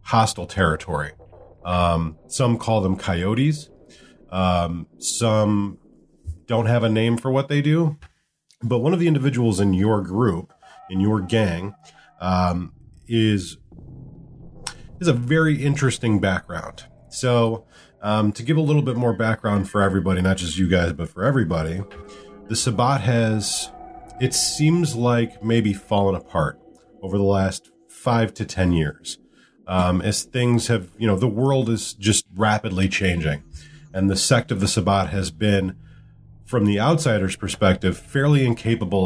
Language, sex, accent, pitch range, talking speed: English, male, American, 95-125 Hz, 145 wpm